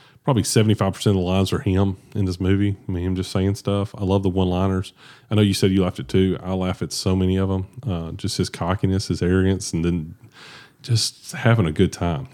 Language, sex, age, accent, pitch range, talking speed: English, male, 30-49, American, 90-105 Hz, 250 wpm